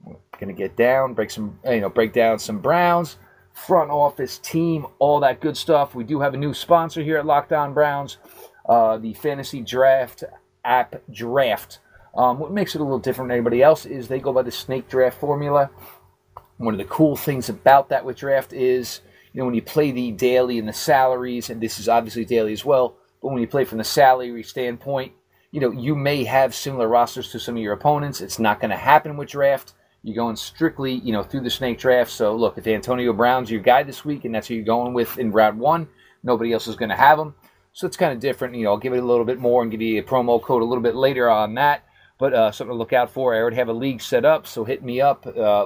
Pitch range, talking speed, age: 115-140 Hz, 245 wpm, 30-49